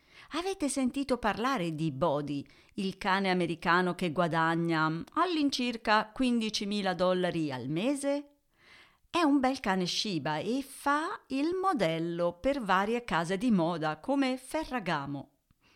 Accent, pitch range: native, 165-250 Hz